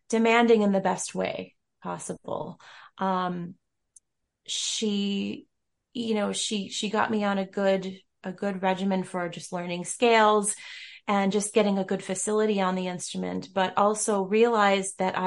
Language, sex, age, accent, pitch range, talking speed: English, female, 30-49, American, 185-225 Hz, 145 wpm